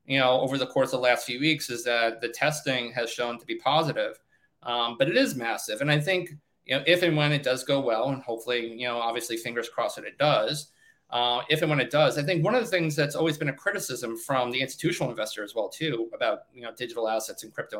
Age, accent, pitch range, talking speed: 20-39, American, 120-145 Hz, 255 wpm